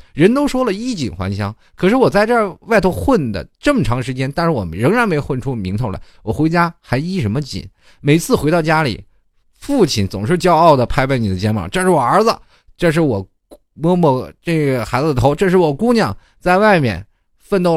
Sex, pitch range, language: male, 120-200 Hz, Chinese